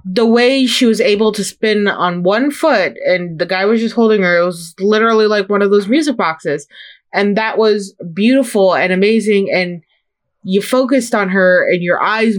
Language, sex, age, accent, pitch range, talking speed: English, female, 20-39, American, 185-220 Hz, 195 wpm